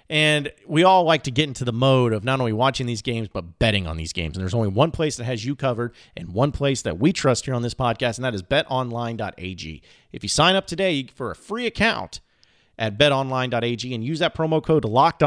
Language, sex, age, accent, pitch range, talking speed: English, male, 30-49, American, 115-155 Hz, 235 wpm